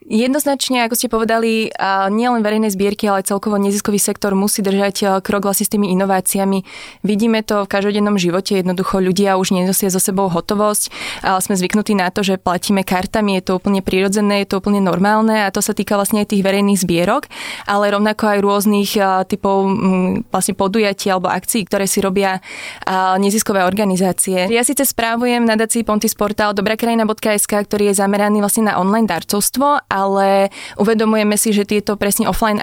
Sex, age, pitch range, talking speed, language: female, 20-39, 195-215 Hz, 165 wpm, Slovak